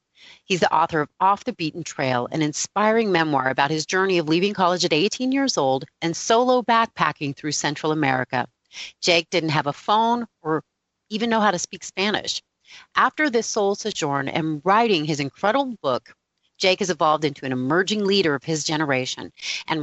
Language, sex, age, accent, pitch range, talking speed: English, female, 40-59, American, 150-210 Hz, 180 wpm